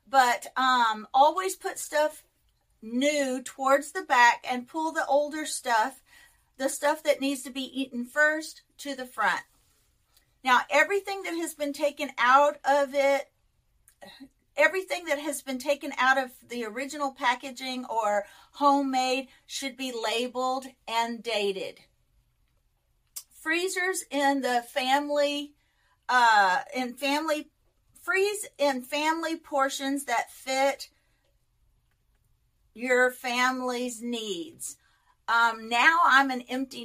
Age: 50-69